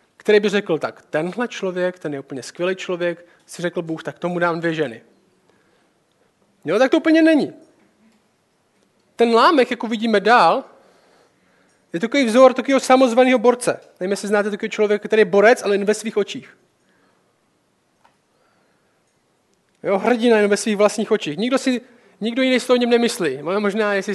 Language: Czech